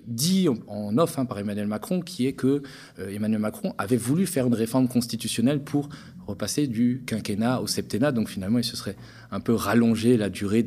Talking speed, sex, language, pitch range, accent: 190 wpm, male, French, 100-135 Hz, French